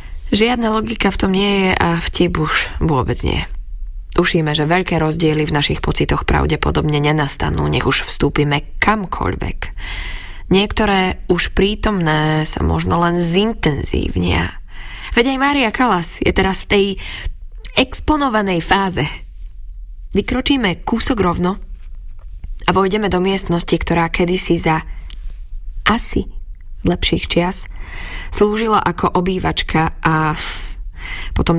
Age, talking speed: 20-39, 110 wpm